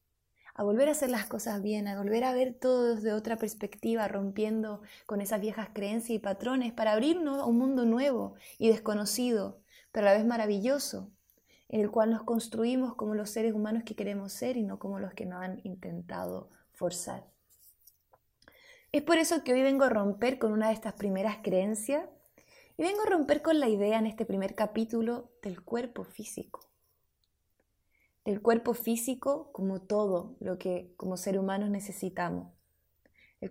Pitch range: 195-245 Hz